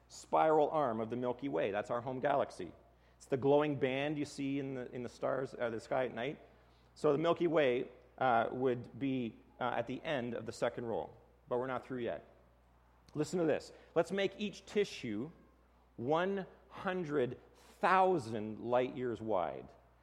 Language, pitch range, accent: English, 105-165 Hz, American